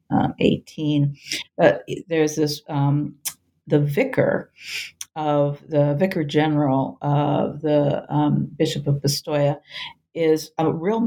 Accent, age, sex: American, 50-69, female